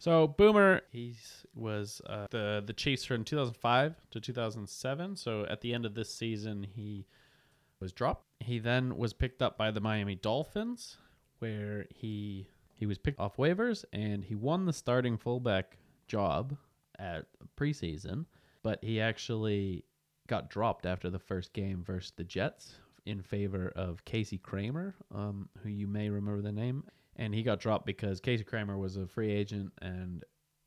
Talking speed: 160 wpm